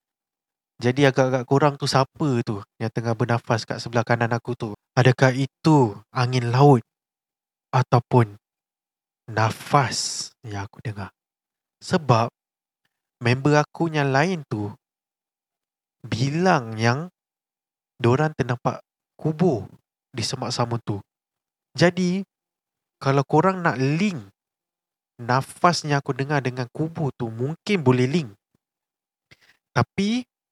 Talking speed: 105 wpm